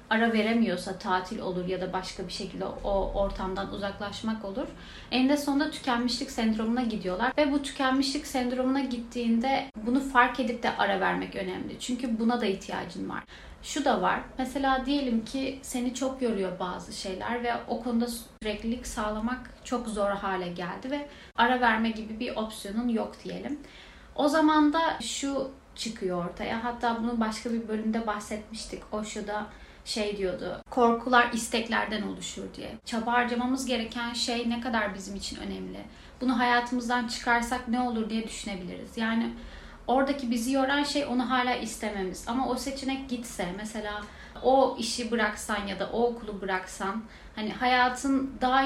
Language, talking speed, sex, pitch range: Turkish, 155 wpm, female, 215-255 Hz